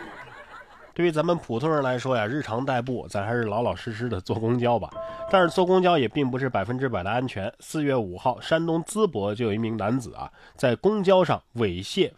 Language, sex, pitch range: Chinese, male, 115-180 Hz